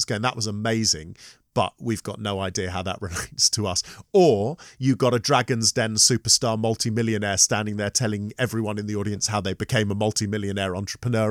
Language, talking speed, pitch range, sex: English, 185 wpm, 110-140 Hz, male